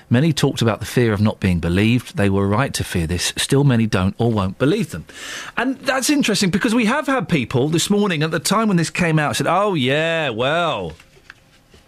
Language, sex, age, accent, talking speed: English, male, 40-59, British, 215 wpm